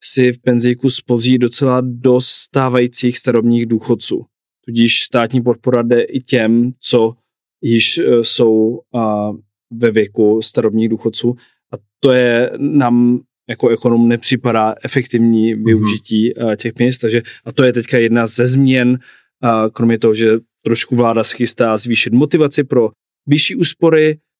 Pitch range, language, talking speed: 115-140 Hz, Czech, 125 wpm